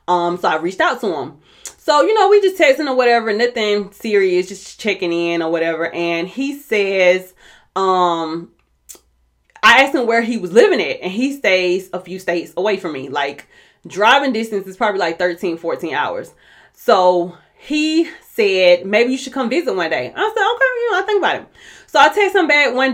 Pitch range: 175-275 Hz